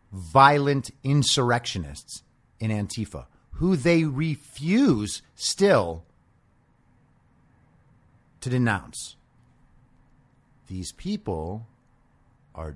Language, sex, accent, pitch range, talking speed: English, male, American, 95-150 Hz, 60 wpm